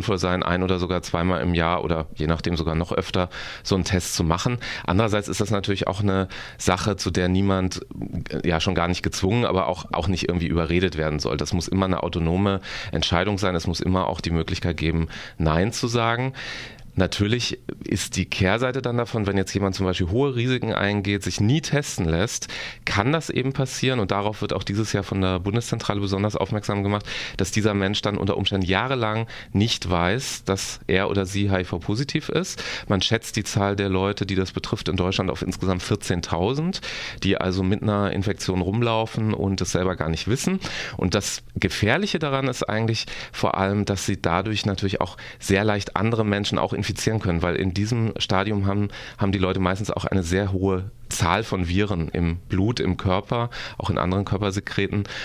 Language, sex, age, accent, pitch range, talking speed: German, male, 30-49, German, 90-110 Hz, 190 wpm